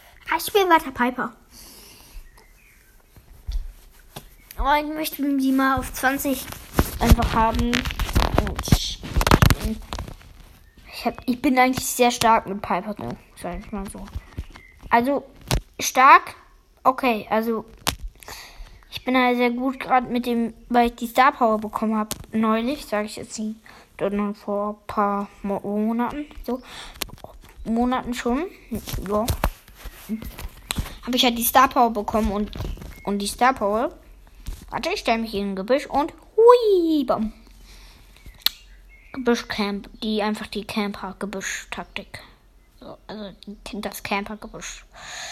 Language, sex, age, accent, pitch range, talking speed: English, female, 10-29, German, 205-265 Hz, 120 wpm